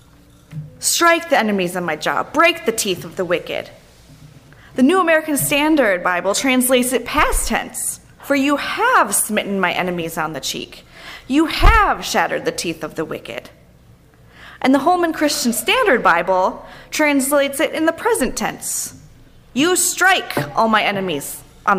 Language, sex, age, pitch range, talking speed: English, female, 20-39, 195-295 Hz, 155 wpm